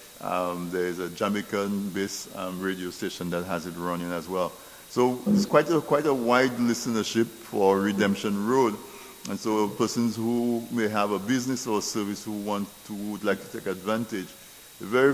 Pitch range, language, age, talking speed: 95-120 Hz, English, 50-69, 180 wpm